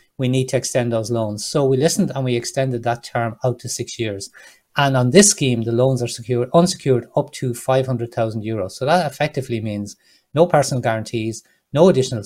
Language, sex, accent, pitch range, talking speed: English, male, Irish, 115-145 Hz, 195 wpm